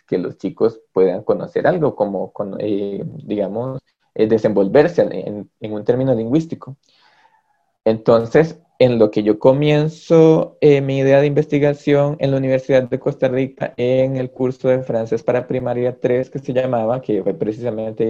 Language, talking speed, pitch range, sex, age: Spanish, 160 wpm, 110-135 Hz, male, 20-39